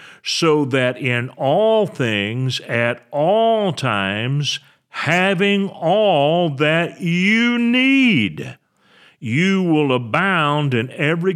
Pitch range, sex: 125-180 Hz, male